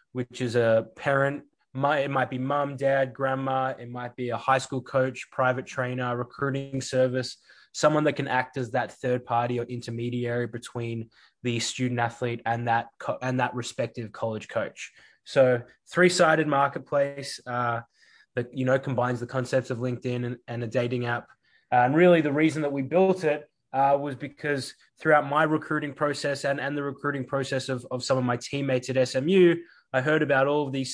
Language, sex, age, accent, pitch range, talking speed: English, male, 20-39, Australian, 125-140 Hz, 185 wpm